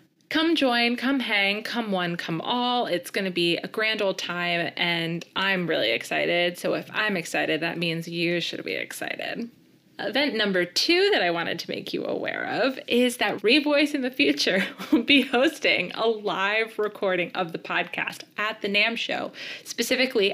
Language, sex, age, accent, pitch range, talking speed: English, female, 20-39, American, 185-240 Hz, 180 wpm